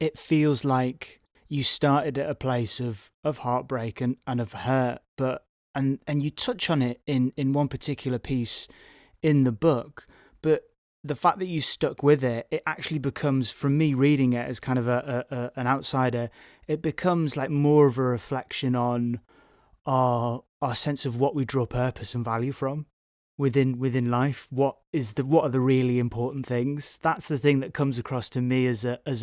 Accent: British